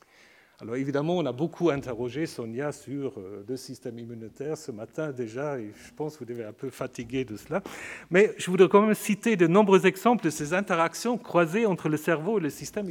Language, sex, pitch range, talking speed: French, male, 135-180 Hz, 205 wpm